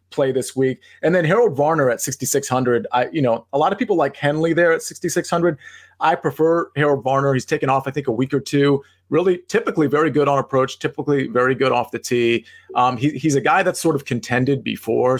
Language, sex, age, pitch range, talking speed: English, male, 30-49, 120-155 Hz, 215 wpm